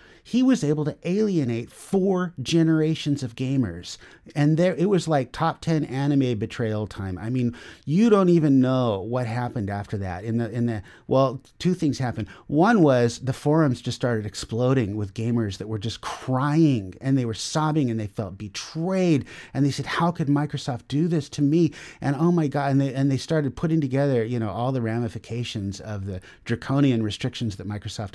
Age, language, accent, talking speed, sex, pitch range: 30-49, English, American, 190 wpm, male, 115-160 Hz